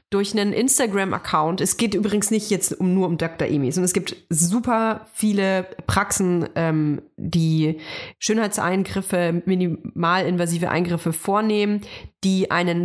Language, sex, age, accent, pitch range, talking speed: German, female, 30-49, German, 170-220 Hz, 125 wpm